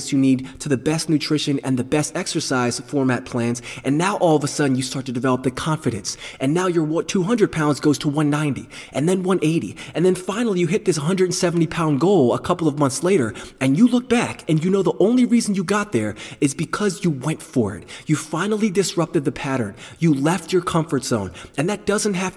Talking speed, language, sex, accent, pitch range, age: 220 wpm, English, male, American, 135-180 Hz, 20-39